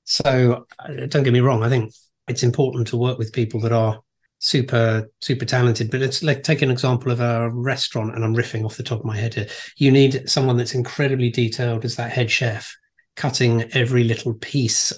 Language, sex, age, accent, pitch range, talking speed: English, male, 40-59, British, 120-135 Hz, 200 wpm